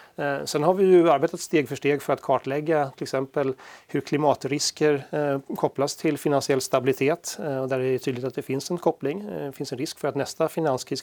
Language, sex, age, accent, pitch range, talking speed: Swedish, male, 30-49, native, 130-150 Hz, 205 wpm